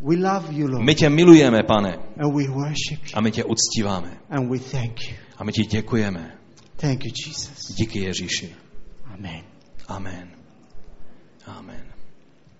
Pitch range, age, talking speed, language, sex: 115-145 Hz, 30-49, 75 wpm, Czech, male